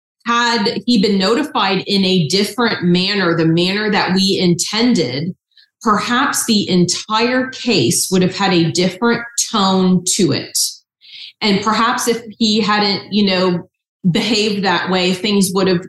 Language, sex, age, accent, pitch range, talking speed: English, female, 30-49, American, 170-215 Hz, 145 wpm